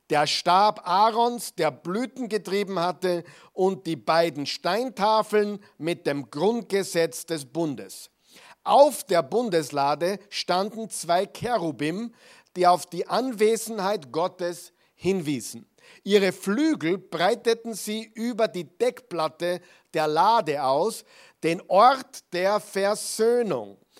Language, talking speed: German, 105 wpm